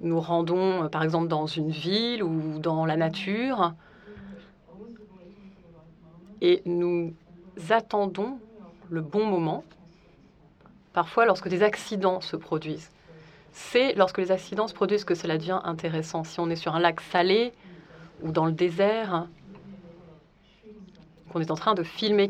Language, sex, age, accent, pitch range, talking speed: French, female, 30-49, French, 165-205 Hz, 135 wpm